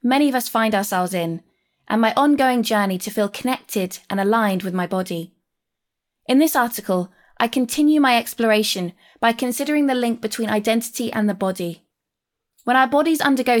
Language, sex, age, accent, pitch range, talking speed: English, female, 20-39, British, 195-260 Hz, 170 wpm